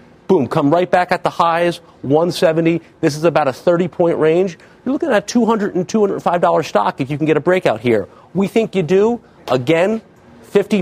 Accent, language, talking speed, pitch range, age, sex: American, English, 190 wpm, 140-190 Hz, 40-59, male